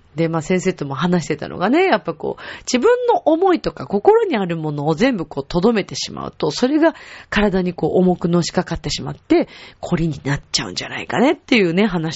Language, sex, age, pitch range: Japanese, female, 30-49, 165-235 Hz